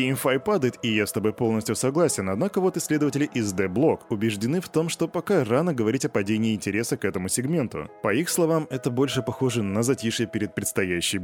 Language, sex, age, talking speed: Russian, male, 20-39, 190 wpm